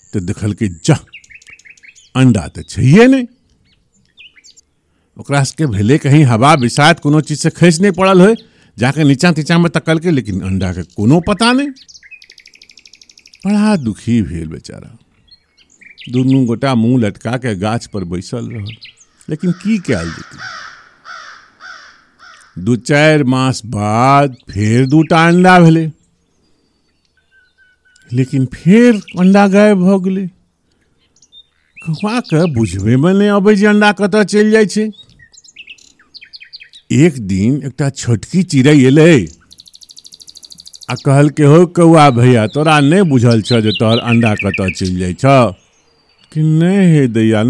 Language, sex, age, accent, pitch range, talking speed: Hindi, male, 50-69, native, 105-170 Hz, 105 wpm